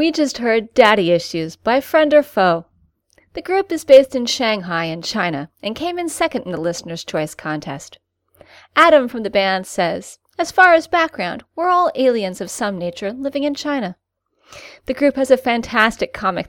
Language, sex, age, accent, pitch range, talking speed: English, female, 30-49, American, 190-290 Hz, 180 wpm